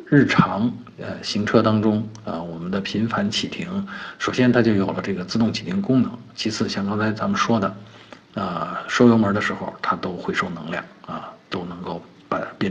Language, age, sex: Chinese, 50-69, male